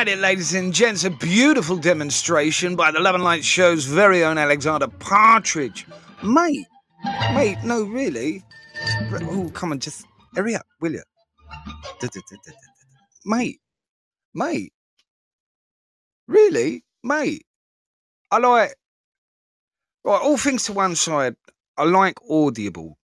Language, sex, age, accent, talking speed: English, male, 30-49, British, 110 wpm